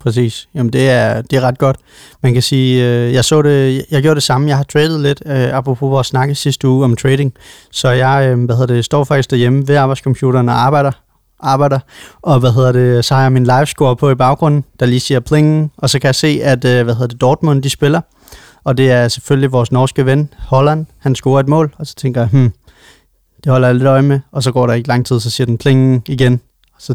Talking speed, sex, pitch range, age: 245 wpm, male, 125-140 Hz, 30-49